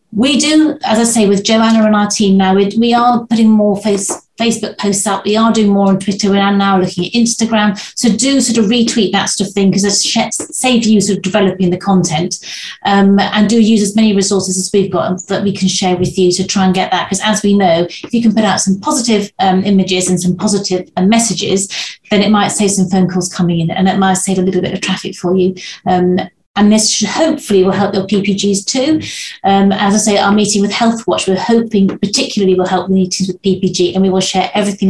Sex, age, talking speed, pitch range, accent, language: female, 40-59, 240 wpm, 185-220 Hz, British, English